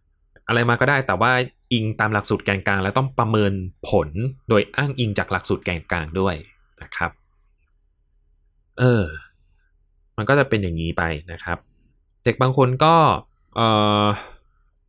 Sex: male